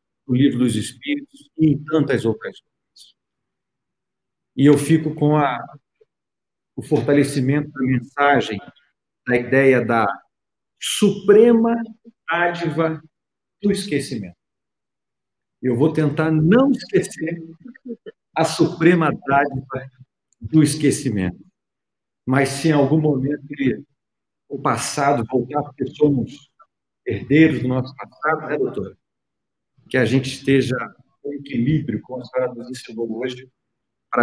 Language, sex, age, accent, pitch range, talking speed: Portuguese, male, 50-69, Brazilian, 130-180 Hz, 105 wpm